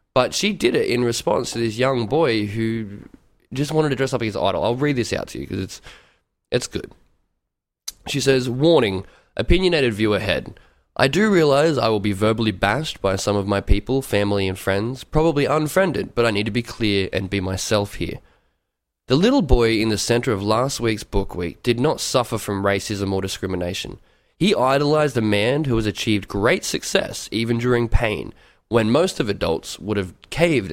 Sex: male